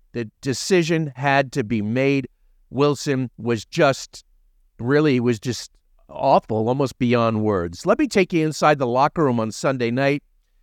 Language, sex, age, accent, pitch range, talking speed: English, male, 50-69, American, 110-145 Hz, 150 wpm